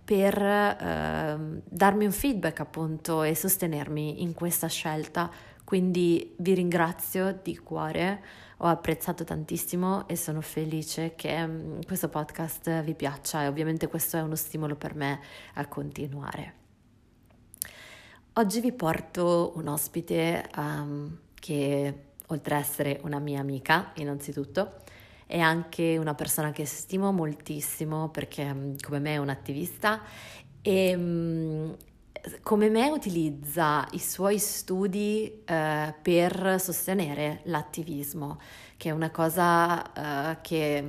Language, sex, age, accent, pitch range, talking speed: Italian, female, 30-49, native, 145-175 Hz, 115 wpm